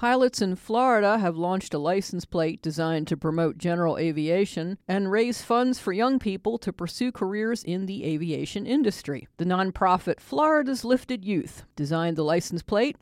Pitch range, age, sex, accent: 165-225 Hz, 50-69, female, American